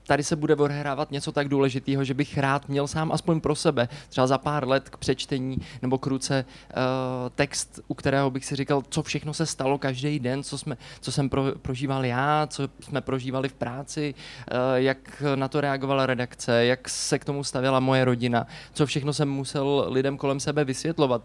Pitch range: 130-145 Hz